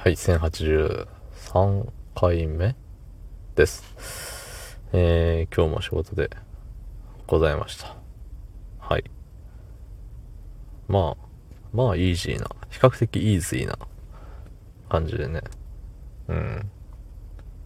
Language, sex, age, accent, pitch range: Japanese, male, 20-39, native, 85-105 Hz